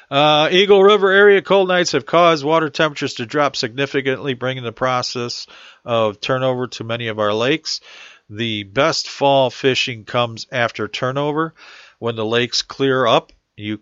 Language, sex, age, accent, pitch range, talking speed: English, male, 40-59, American, 110-135 Hz, 155 wpm